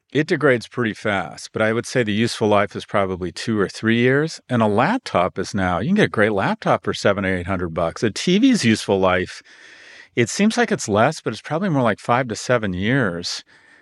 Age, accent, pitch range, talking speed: 50-69, American, 100-140 Hz, 225 wpm